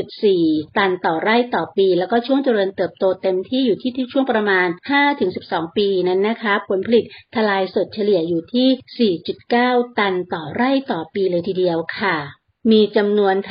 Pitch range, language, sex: 190-240 Hz, English, female